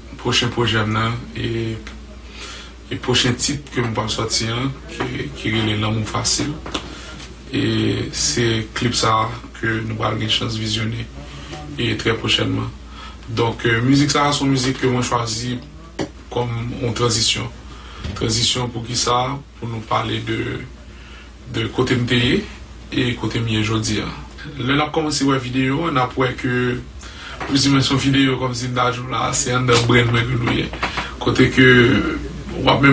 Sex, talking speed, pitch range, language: male, 150 wpm, 115-130 Hz, English